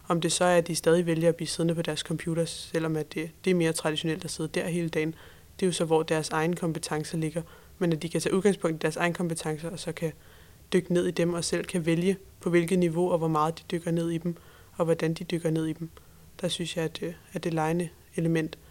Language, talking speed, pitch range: Danish, 265 wpm, 160-180 Hz